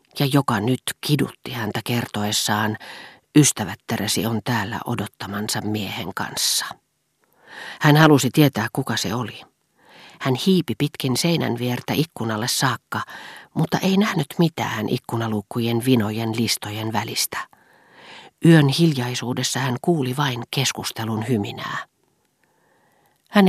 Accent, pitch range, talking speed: native, 115-145 Hz, 105 wpm